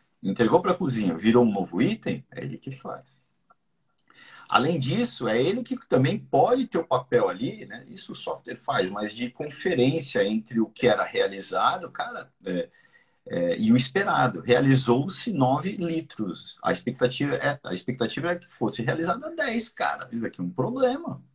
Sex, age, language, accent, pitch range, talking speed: male, 50-69, Portuguese, Brazilian, 120-195 Hz, 170 wpm